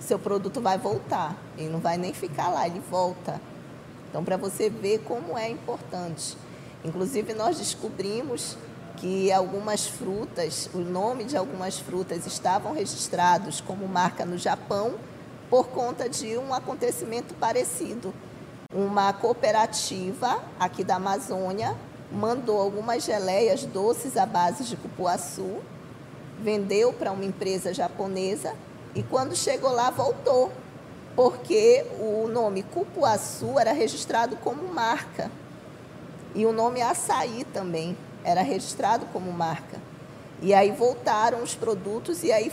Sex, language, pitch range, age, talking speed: female, Portuguese, 180-235 Hz, 20-39, 125 wpm